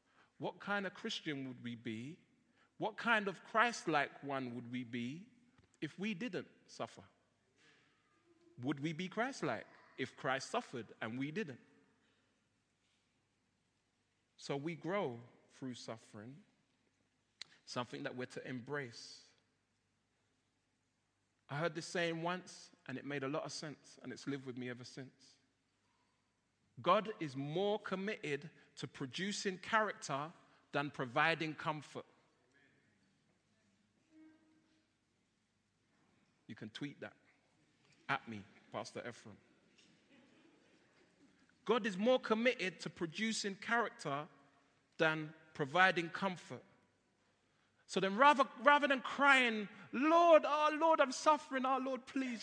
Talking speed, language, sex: 115 wpm, English, male